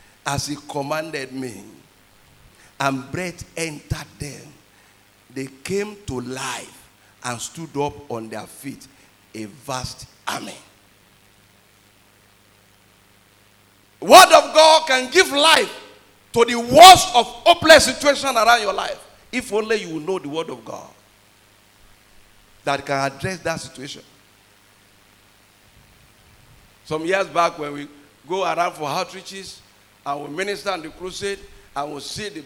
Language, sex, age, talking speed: English, male, 50-69, 125 wpm